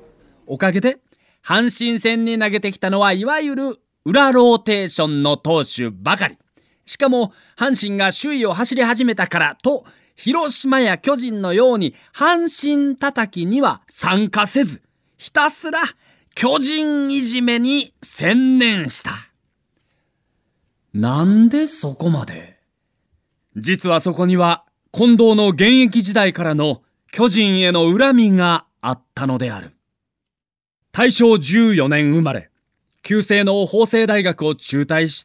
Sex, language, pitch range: male, Japanese, 155-235 Hz